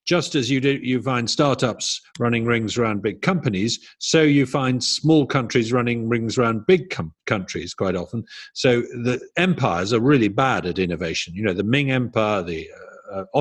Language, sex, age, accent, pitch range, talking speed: English, male, 50-69, British, 105-140 Hz, 180 wpm